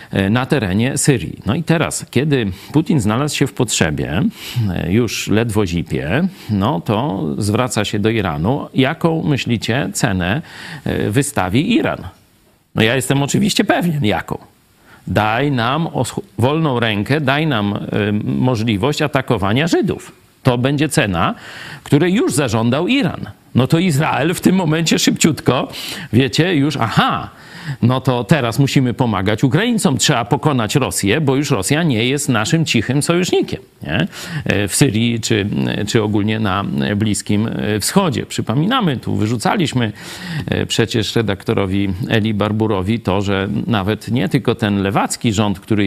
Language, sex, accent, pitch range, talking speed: Polish, male, native, 105-150 Hz, 130 wpm